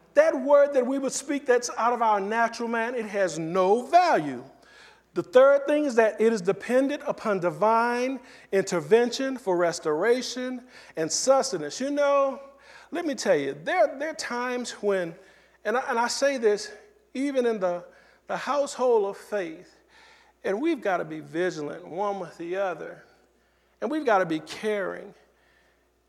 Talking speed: 160 wpm